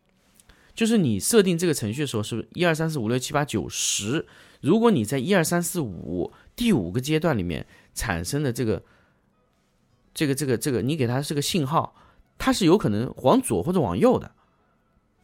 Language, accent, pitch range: Chinese, native, 110-170 Hz